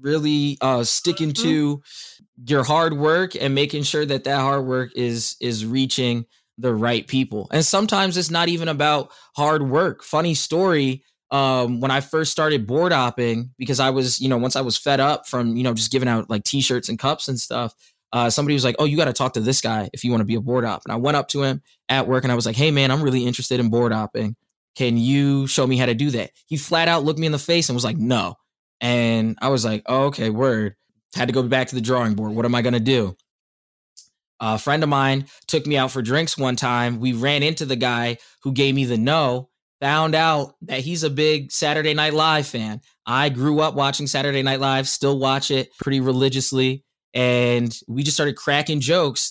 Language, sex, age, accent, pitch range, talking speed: English, male, 20-39, American, 125-150 Hz, 230 wpm